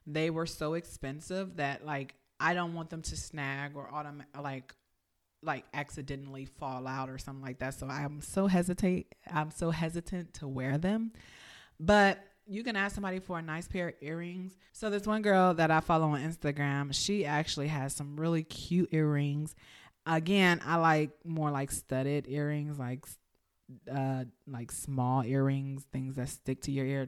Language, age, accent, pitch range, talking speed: English, 30-49, American, 140-185 Hz, 175 wpm